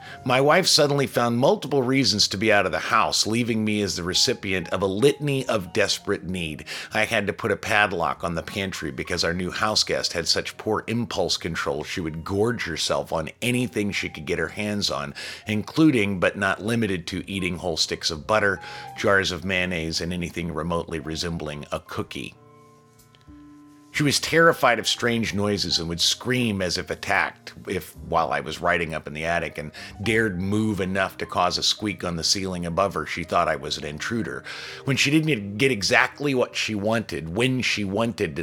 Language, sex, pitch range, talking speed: English, male, 85-115 Hz, 190 wpm